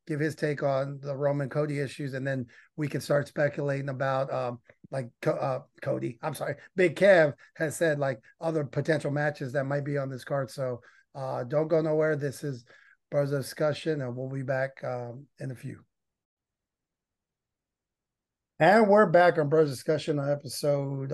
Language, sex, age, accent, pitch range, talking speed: English, male, 30-49, American, 135-155 Hz, 175 wpm